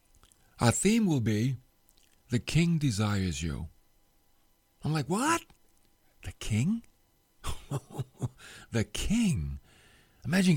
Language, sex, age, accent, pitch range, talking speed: English, male, 50-69, American, 95-135 Hz, 90 wpm